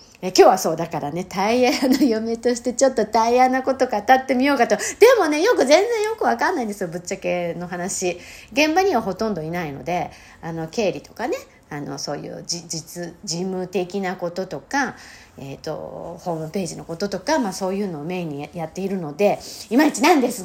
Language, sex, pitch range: Japanese, female, 185-285 Hz